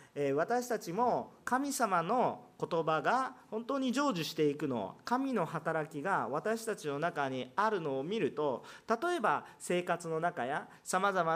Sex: male